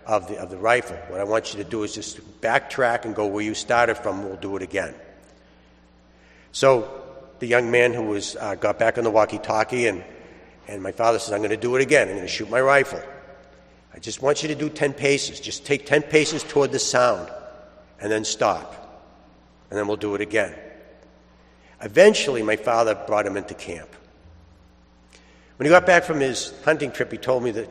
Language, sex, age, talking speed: English, male, 60-79, 210 wpm